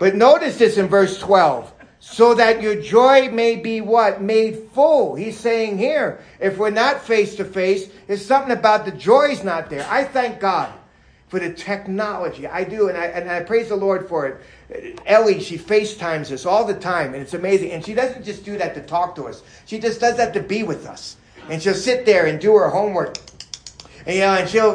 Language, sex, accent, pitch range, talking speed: English, male, American, 190-255 Hz, 215 wpm